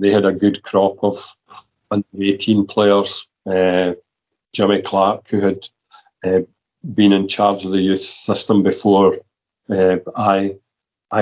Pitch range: 95-100 Hz